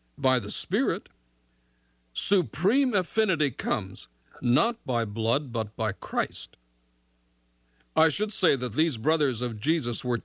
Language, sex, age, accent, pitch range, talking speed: English, male, 60-79, American, 100-155 Hz, 125 wpm